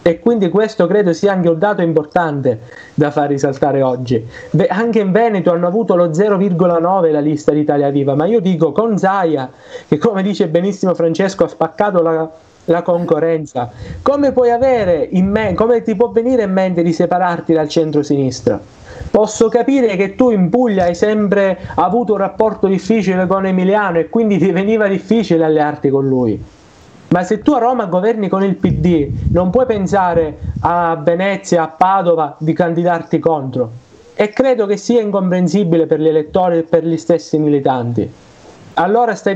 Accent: native